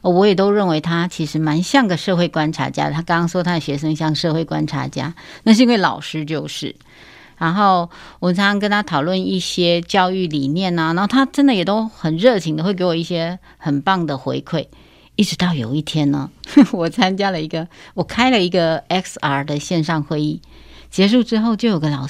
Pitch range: 160-215 Hz